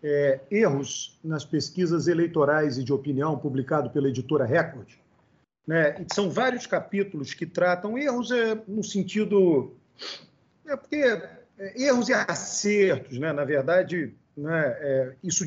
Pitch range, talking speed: 150-205 Hz, 130 wpm